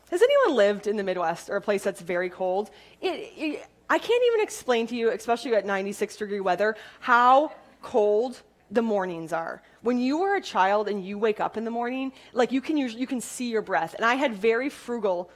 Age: 20-39